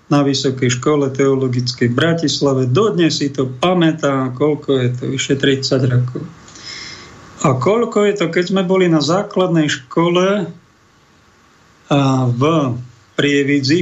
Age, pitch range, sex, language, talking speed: 50-69, 140-175 Hz, male, Slovak, 115 wpm